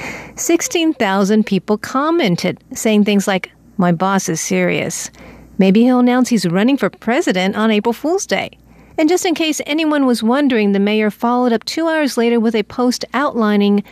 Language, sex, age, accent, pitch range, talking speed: German, female, 50-69, American, 195-255 Hz, 170 wpm